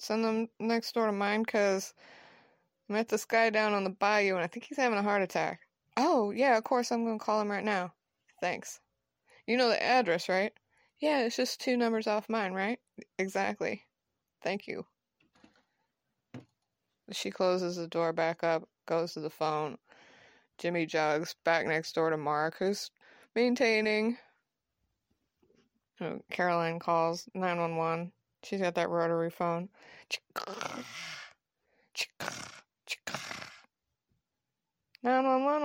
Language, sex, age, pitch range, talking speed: English, female, 20-39, 175-235 Hz, 135 wpm